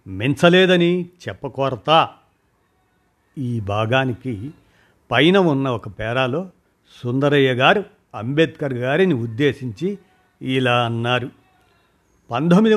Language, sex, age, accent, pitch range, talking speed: Telugu, male, 50-69, native, 120-170 Hz, 75 wpm